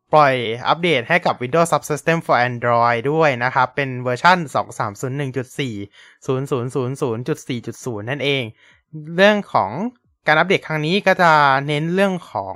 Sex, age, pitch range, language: male, 20-39, 130-165 Hz, Thai